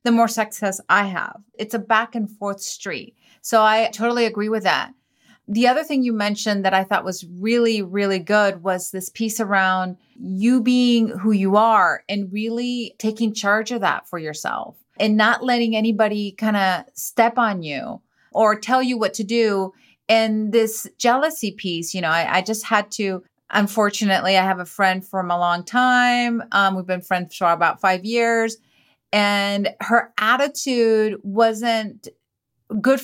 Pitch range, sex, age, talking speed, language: 200-235 Hz, female, 30-49, 170 wpm, English